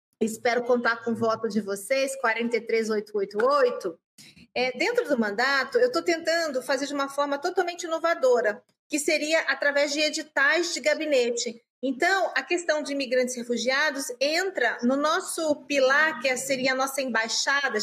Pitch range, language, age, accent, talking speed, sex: 245-300 Hz, Portuguese, 30-49, Brazilian, 150 wpm, female